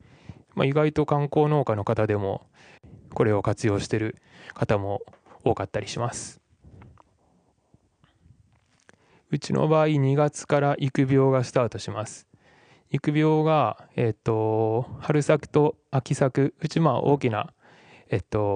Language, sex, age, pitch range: Japanese, male, 20-39, 110-135 Hz